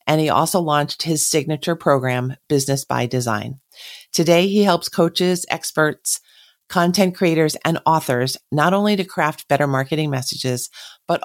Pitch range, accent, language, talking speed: 140-175 Hz, American, English, 145 wpm